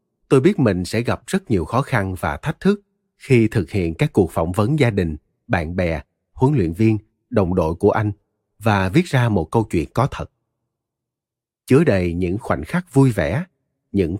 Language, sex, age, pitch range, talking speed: Vietnamese, male, 30-49, 90-120 Hz, 195 wpm